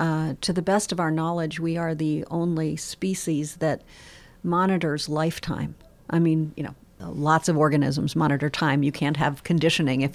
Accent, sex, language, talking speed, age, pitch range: American, female, English, 170 wpm, 50-69, 155-185 Hz